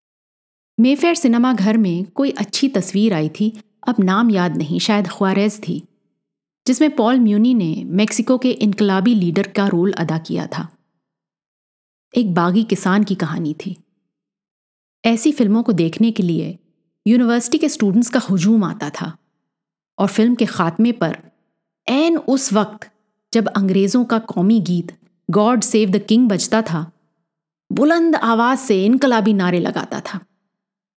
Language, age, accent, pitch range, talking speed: Hindi, 30-49, native, 185-235 Hz, 140 wpm